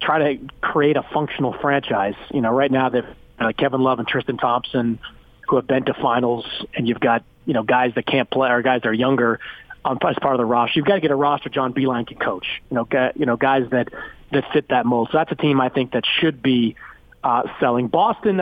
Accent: American